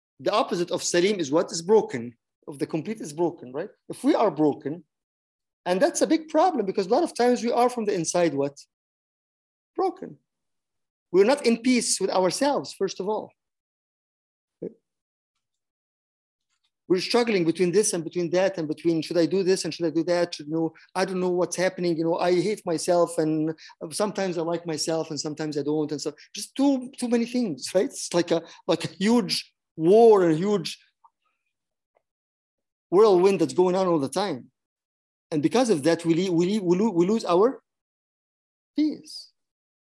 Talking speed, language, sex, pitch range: 180 wpm, English, male, 165-220 Hz